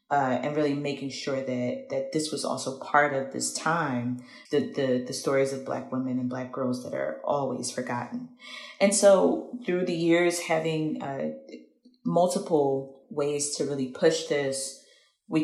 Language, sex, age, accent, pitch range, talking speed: English, female, 30-49, American, 135-175 Hz, 165 wpm